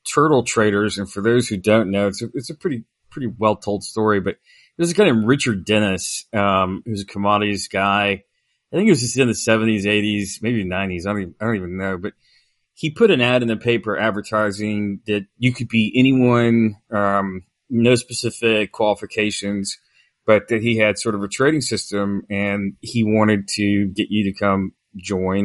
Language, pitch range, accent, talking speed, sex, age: English, 100-115 Hz, American, 195 wpm, male, 30-49